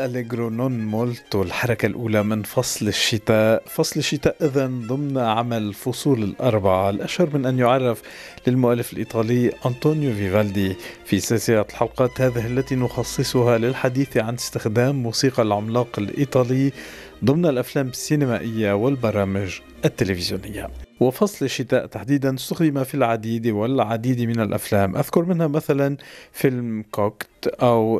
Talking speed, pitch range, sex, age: 115 wpm, 110-140 Hz, male, 50-69